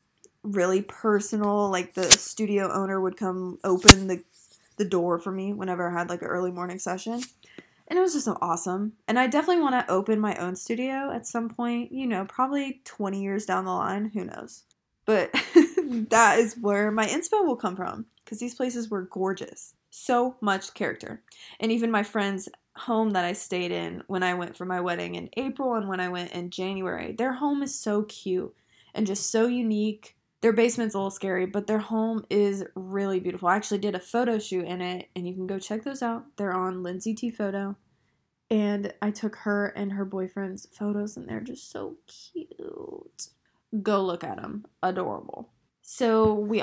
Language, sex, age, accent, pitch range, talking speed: English, female, 20-39, American, 185-225 Hz, 195 wpm